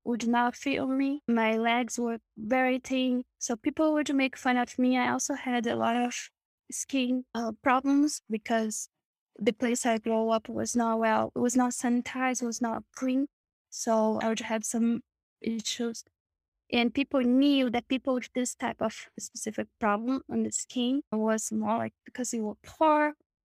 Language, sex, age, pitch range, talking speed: English, female, 10-29, 230-265 Hz, 175 wpm